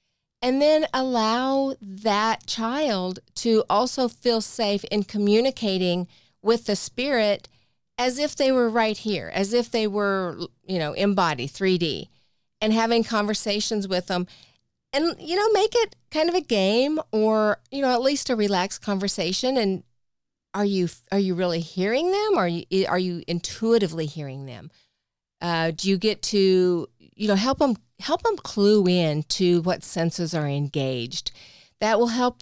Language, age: English, 40-59